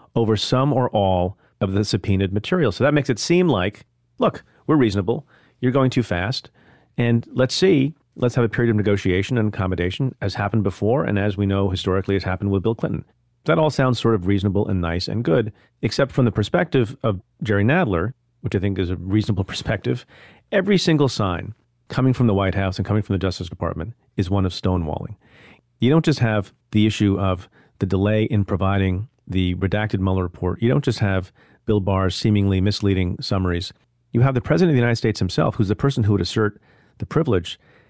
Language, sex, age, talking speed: English, male, 40-59, 205 wpm